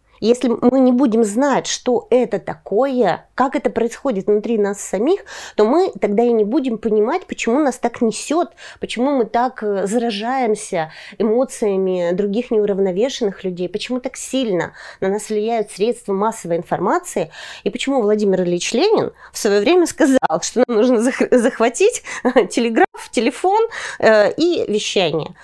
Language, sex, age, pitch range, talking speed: Russian, female, 30-49, 195-260 Hz, 140 wpm